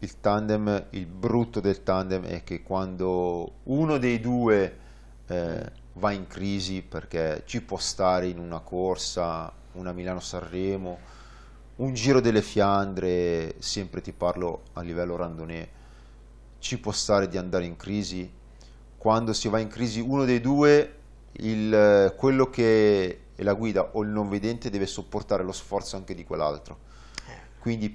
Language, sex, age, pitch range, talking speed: Italian, male, 30-49, 95-115 Hz, 150 wpm